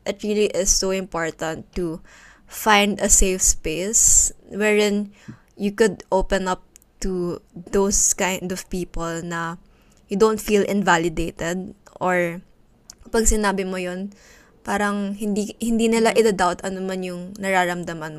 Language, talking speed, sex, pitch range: Filipino, 125 wpm, female, 180-215 Hz